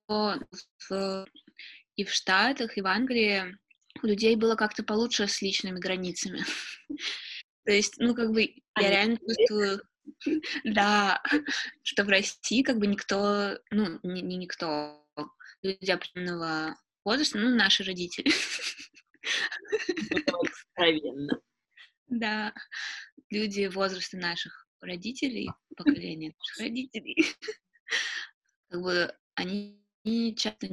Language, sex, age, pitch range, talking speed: Russian, female, 20-39, 175-220 Hz, 100 wpm